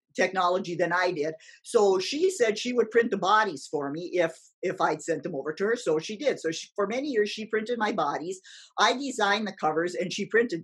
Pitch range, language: 170-225 Hz, English